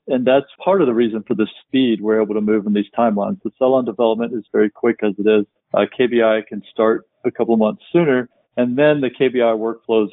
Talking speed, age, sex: 235 wpm, 40-59, male